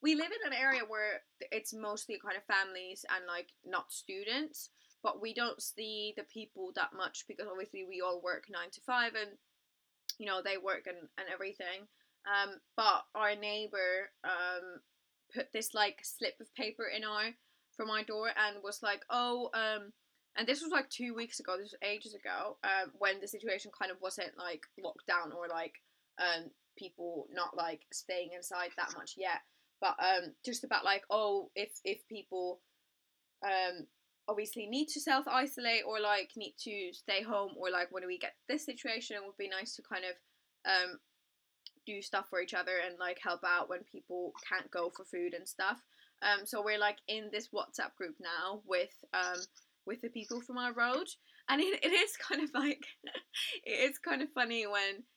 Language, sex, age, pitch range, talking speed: English, female, 20-39, 185-245 Hz, 190 wpm